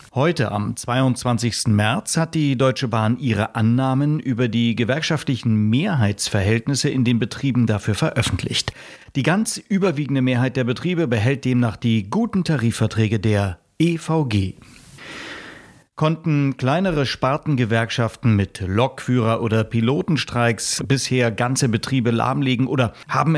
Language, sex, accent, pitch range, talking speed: German, male, German, 115-145 Hz, 115 wpm